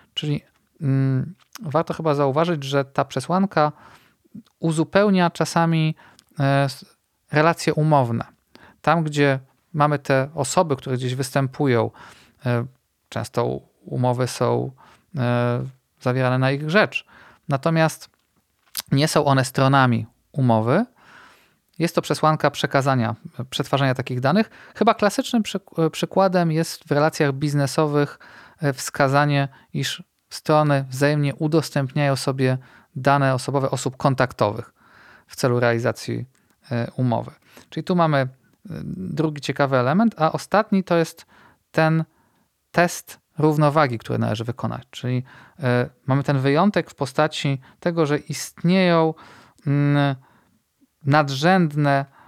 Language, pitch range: Polish, 130-160 Hz